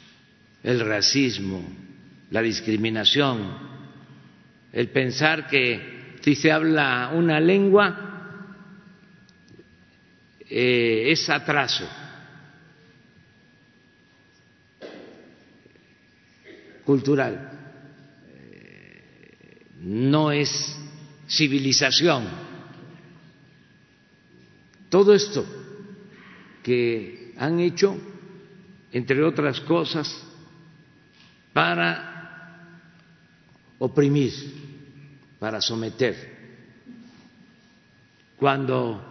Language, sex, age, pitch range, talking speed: Spanish, male, 60-79, 130-170 Hz, 50 wpm